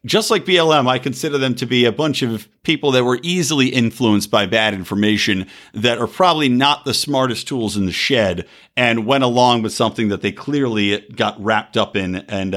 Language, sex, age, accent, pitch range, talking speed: English, male, 50-69, American, 110-160 Hz, 200 wpm